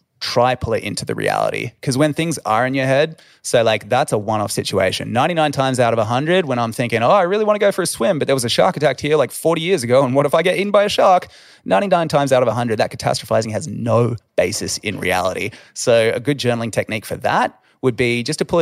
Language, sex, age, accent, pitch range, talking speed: English, male, 20-39, Australian, 110-140 Hz, 260 wpm